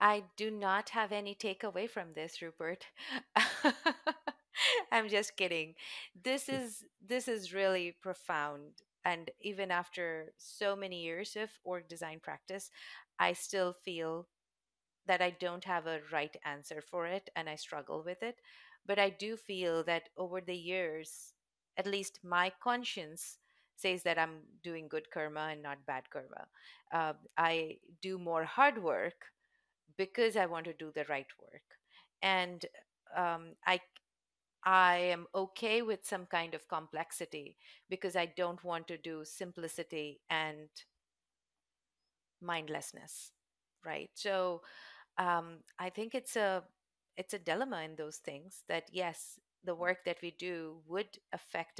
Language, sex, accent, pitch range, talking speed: English, female, Indian, 165-205 Hz, 140 wpm